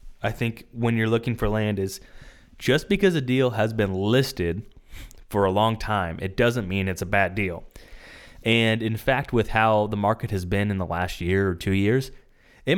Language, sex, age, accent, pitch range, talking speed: English, male, 20-39, American, 100-120 Hz, 200 wpm